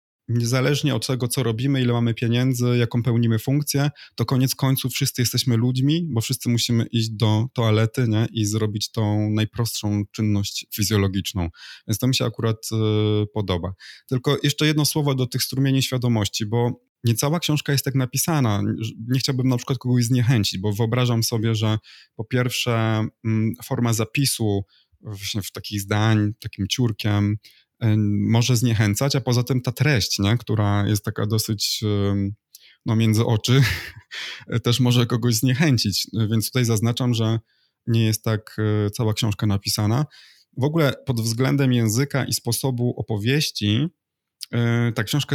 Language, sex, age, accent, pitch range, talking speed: Polish, male, 20-39, native, 110-130 Hz, 140 wpm